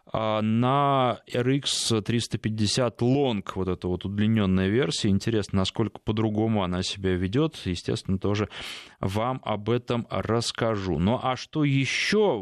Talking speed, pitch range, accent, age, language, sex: 120 wpm, 100-125 Hz, native, 20-39, Russian, male